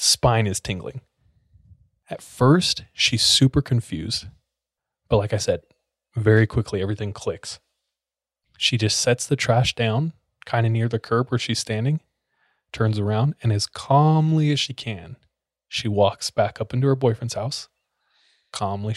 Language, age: English, 20-39